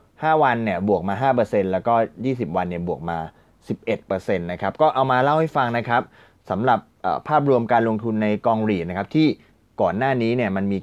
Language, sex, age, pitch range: Thai, male, 20-39, 95-120 Hz